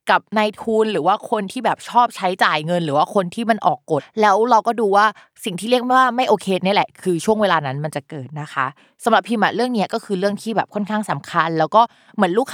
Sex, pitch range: female, 165-215 Hz